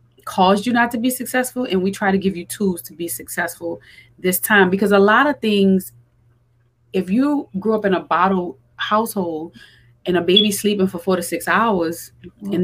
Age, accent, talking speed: 30-49, American, 195 wpm